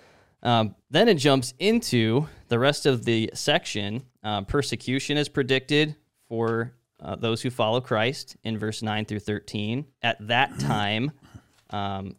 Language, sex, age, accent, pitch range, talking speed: English, male, 20-39, American, 105-130 Hz, 145 wpm